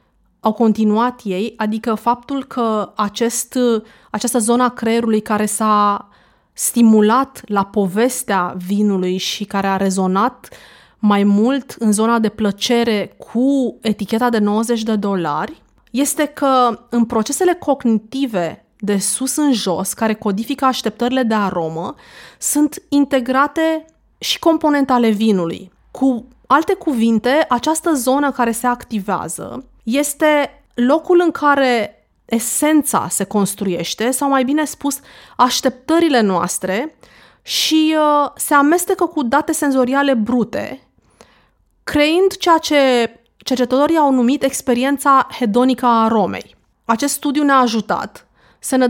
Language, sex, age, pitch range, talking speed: Romanian, female, 30-49, 215-280 Hz, 115 wpm